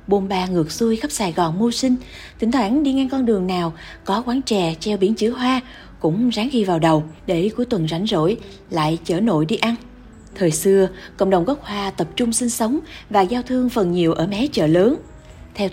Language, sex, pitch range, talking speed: Vietnamese, female, 175-245 Hz, 220 wpm